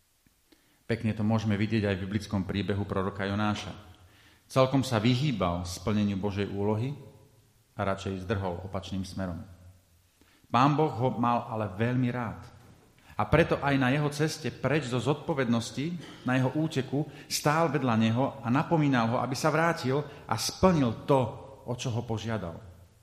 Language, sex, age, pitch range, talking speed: Slovak, male, 40-59, 100-135 Hz, 150 wpm